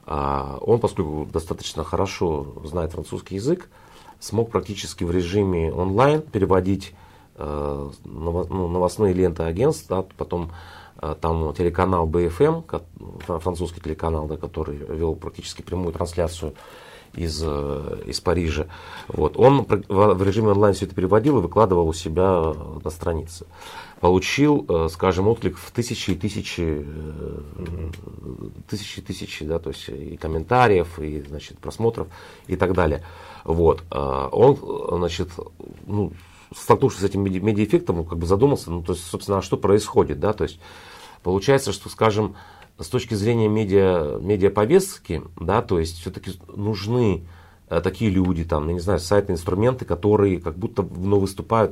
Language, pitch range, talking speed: Russian, 85-100 Hz, 125 wpm